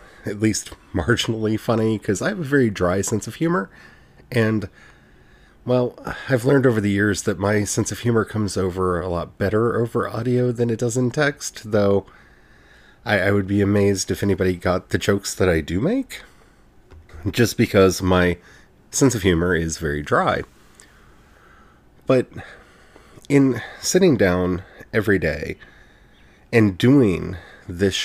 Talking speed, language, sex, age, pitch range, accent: 150 wpm, English, male, 30-49, 90-120 Hz, American